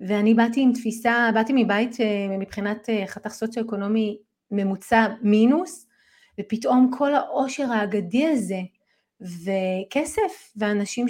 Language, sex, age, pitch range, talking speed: Hebrew, female, 30-49, 220-275 Hz, 95 wpm